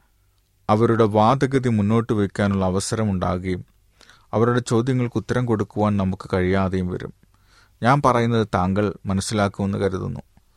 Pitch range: 95-110 Hz